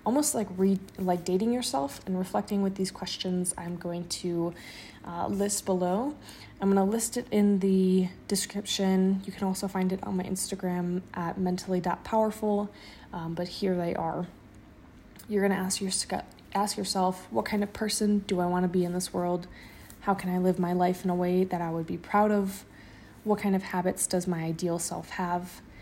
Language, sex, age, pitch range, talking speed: English, female, 20-39, 175-200 Hz, 195 wpm